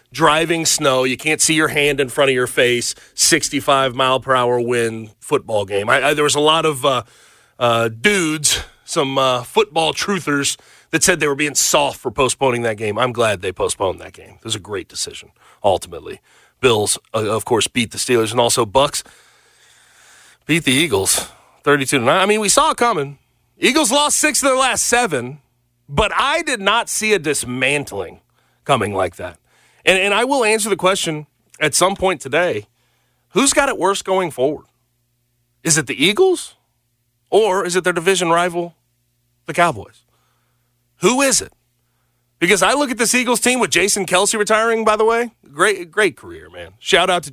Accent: American